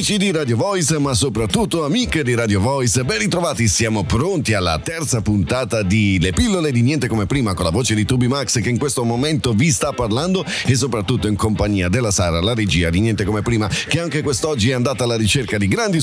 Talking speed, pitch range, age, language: 215 wpm, 105-135 Hz, 40-59, Italian